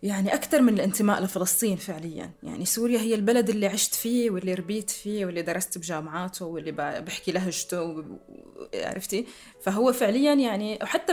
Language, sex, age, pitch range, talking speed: Arabic, female, 20-39, 185-235 Hz, 175 wpm